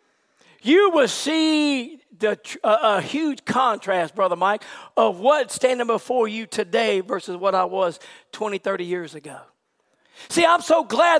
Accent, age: American, 40-59